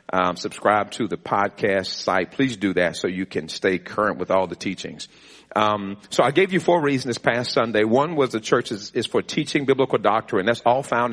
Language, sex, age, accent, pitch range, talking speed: English, male, 50-69, American, 105-130 Hz, 220 wpm